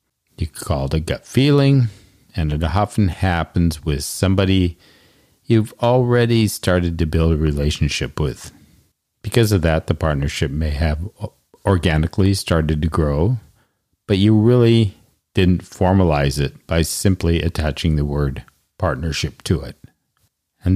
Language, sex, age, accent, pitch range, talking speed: English, male, 50-69, American, 80-100 Hz, 135 wpm